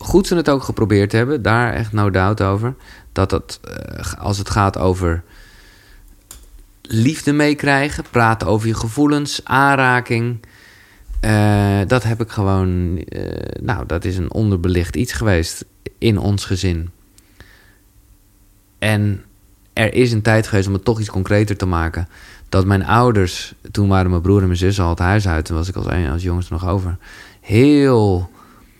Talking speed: 160 wpm